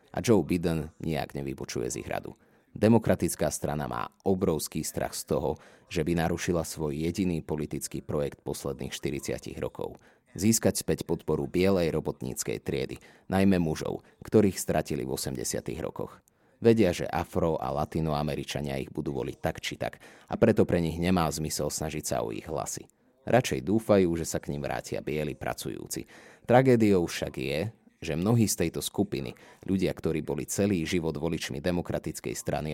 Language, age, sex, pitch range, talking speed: Slovak, 30-49, male, 75-95 Hz, 155 wpm